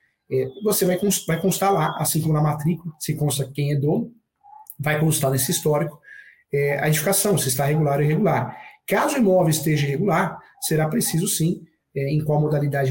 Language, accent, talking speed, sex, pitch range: Portuguese, Brazilian, 165 wpm, male, 145-180 Hz